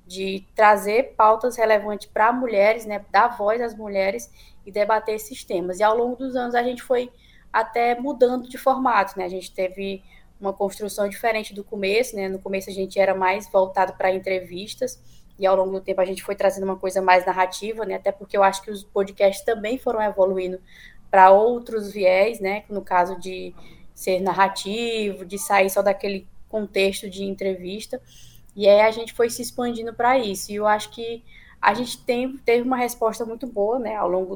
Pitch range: 190-220 Hz